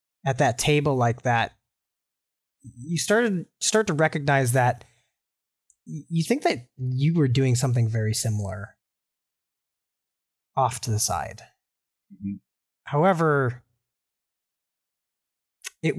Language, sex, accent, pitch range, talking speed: English, male, American, 120-145 Hz, 100 wpm